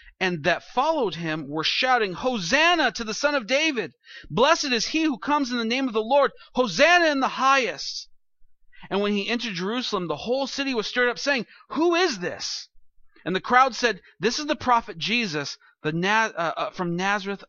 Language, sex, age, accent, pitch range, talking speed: English, male, 40-59, American, 185-250 Hz, 195 wpm